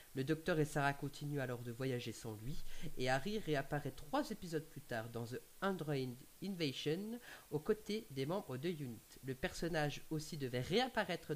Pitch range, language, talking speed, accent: 135-190 Hz, French, 170 wpm, French